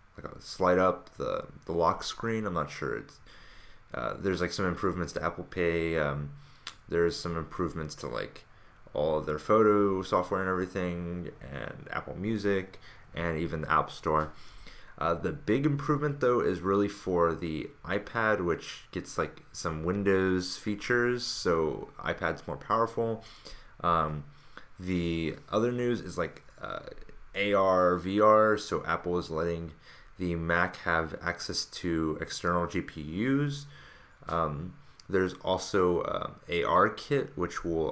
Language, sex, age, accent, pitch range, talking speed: English, male, 20-39, American, 80-100 Hz, 140 wpm